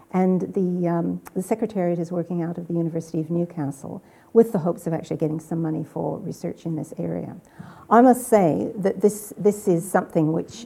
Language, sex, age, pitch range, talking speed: English, female, 60-79, 165-190 Hz, 195 wpm